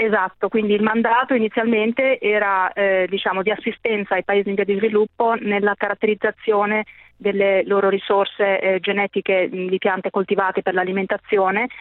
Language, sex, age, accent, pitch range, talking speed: Italian, female, 30-49, native, 190-215 Hz, 140 wpm